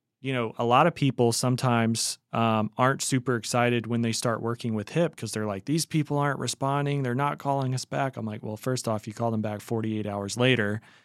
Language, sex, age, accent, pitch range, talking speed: English, male, 30-49, American, 115-135 Hz, 225 wpm